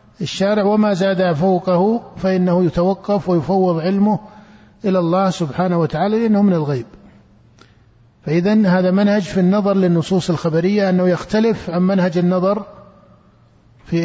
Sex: male